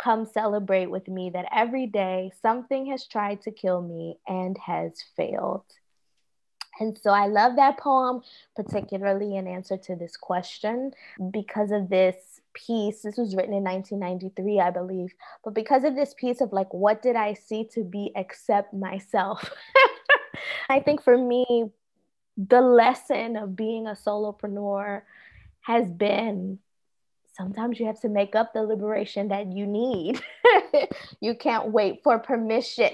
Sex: female